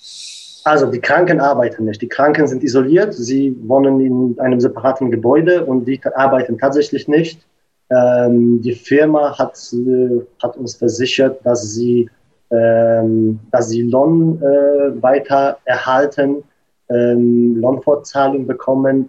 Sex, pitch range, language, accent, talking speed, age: male, 125-145 Hz, German, German, 125 wpm, 20-39